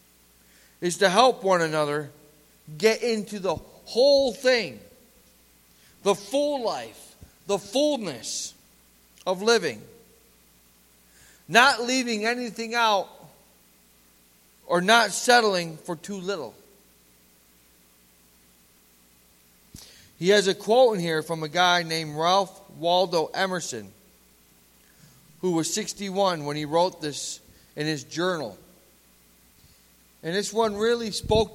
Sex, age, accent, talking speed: male, 40-59, American, 105 wpm